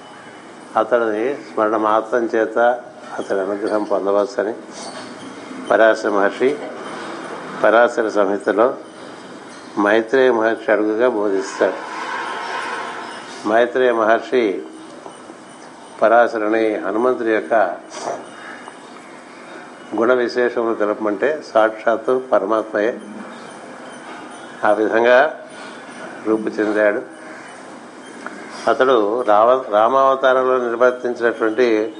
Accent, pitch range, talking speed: native, 105-120 Hz, 60 wpm